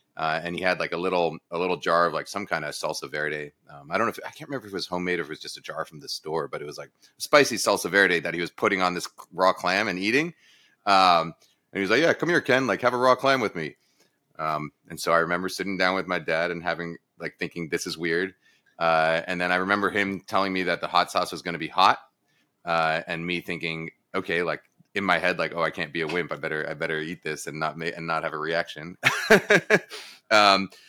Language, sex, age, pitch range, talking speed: English, male, 30-49, 85-125 Hz, 265 wpm